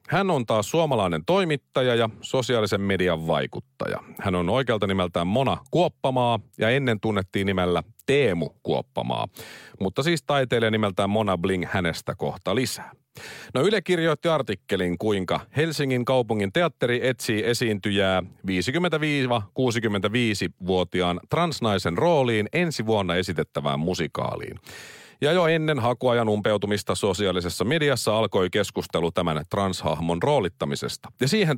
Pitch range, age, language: 95-130 Hz, 40-59, Finnish